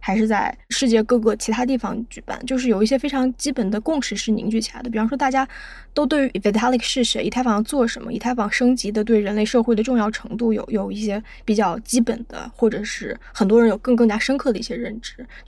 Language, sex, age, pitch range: Chinese, female, 20-39, 210-250 Hz